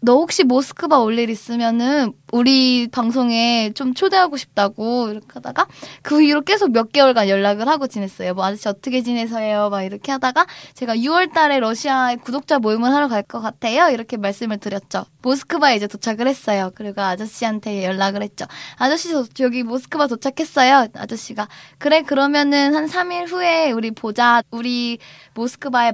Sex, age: female, 20-39